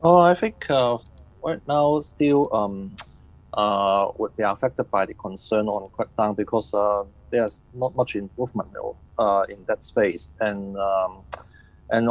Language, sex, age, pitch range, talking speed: English, male, 20-39, 100-120 Hz, 155 wpm